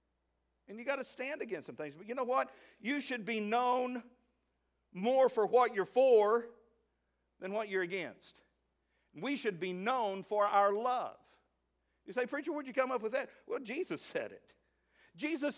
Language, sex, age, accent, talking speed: English, male, 50-69, American, 175 wpm